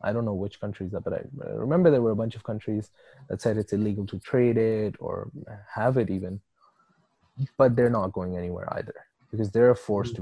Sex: male